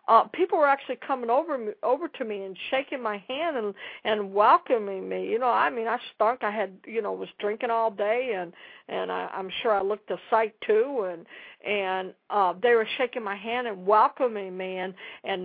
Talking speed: 215 wpm